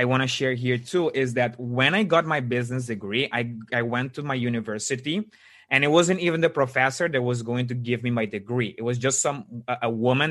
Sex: male